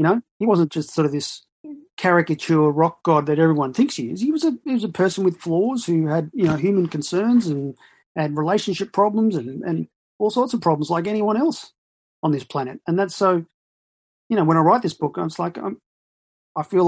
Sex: male